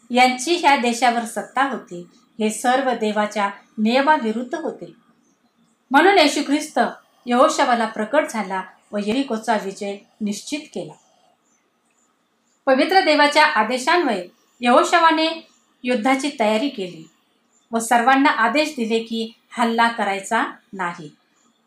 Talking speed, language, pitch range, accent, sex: 85 wpm, Marathi, 225-290 Hz, native, female